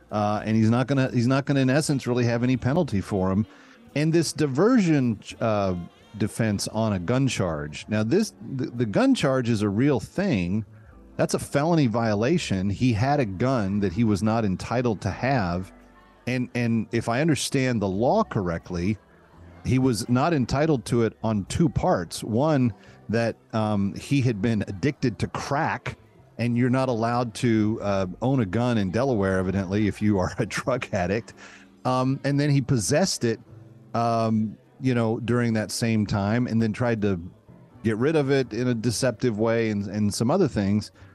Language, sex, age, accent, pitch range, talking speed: English, male, 40-59, American, 100-130 Hz, 185 wpm